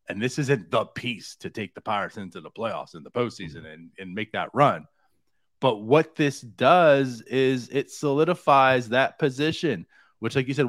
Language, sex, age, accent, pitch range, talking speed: English, male, 30-49, American, 120-160 Hz, 185 wpm